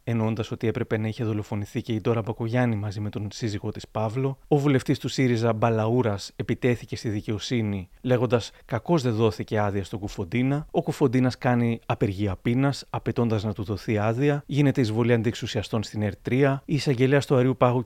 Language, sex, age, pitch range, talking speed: Greek, male, 30-49, 110-135 Hz, 170 wpm